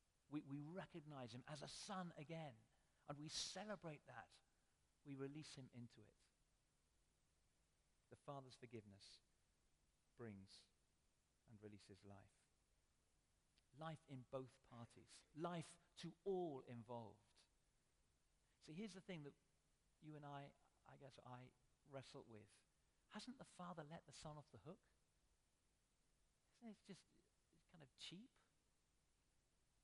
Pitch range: 115-155 Hz